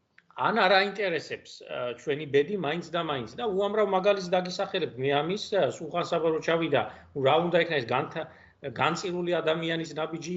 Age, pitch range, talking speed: 50-69, 130-170 Hz, 170 wpm